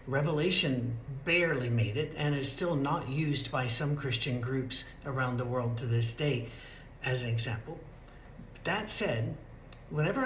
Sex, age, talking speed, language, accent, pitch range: male, 60-79, 145 wpm, English, American, 130-170 Hz